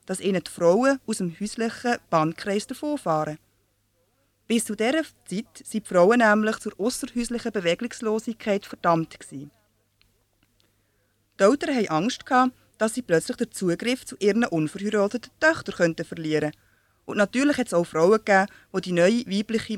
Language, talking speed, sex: German, 145 wpm, female